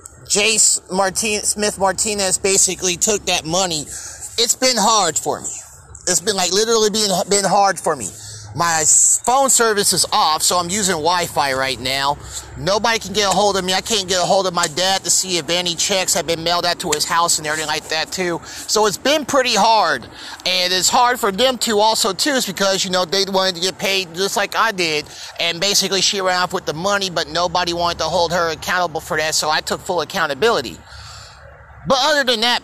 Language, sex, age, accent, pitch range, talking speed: English, male, 30-49, American, 175-215 Hz, 210 wpm